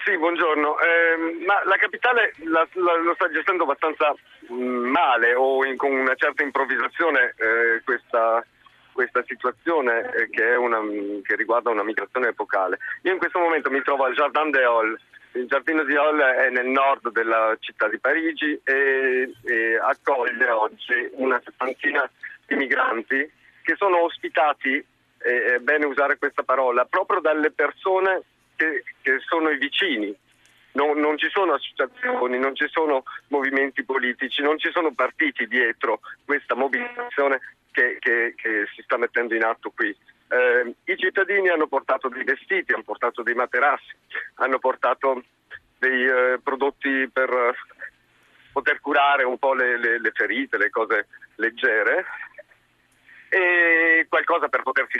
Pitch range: 130-175 Hz